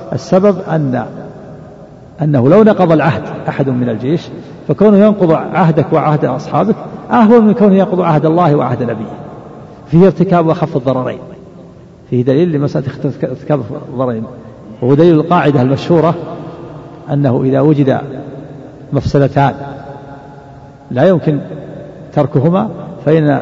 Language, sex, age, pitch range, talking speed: Arabic, male, 50-69, 140-175 Hz, 110 wpm